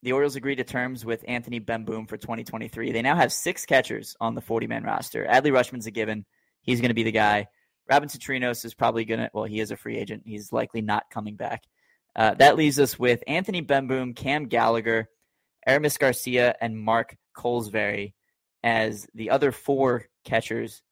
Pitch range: 110-130 Hz